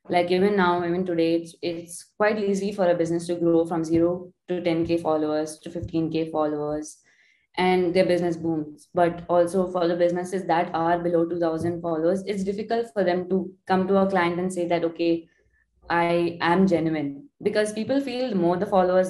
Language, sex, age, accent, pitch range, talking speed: English, female, 20-39, Indian, 165-195 Hz, 185 wpm